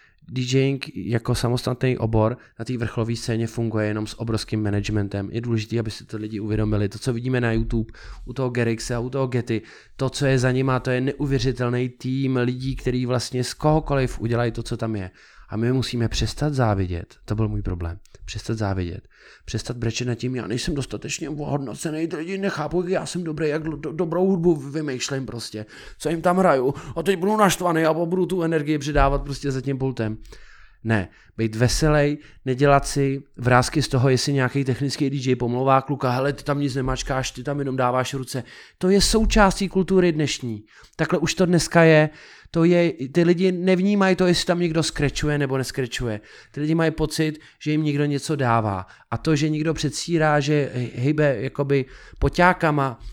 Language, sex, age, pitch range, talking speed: Czech, male, 20-39, 115-150 Hz, 185 wpm